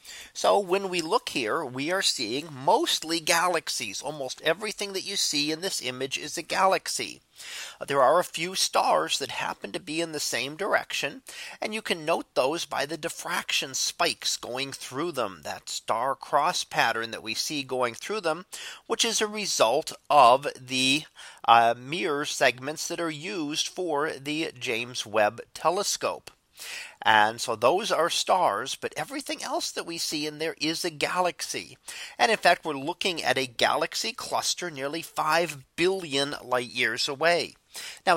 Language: English